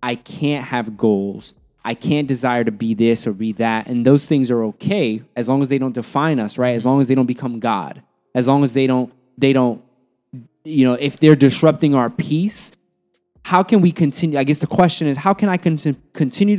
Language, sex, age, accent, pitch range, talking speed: English, male, 20-39, American, 120-145 Hz, 215 wpm